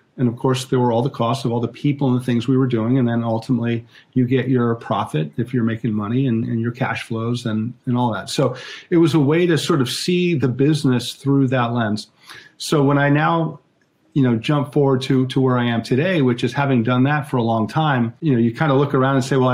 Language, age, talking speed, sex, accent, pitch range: English, 40-59, 260 wpm, male, American, 120-140 Hz